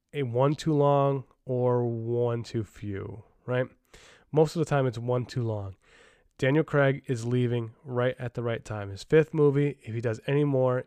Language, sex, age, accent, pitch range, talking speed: English, male, 20-39, American, 115-140 Hz, 190 wpm